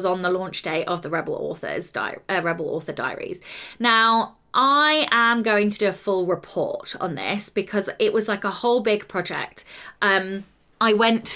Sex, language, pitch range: female, English, 180-230 Hz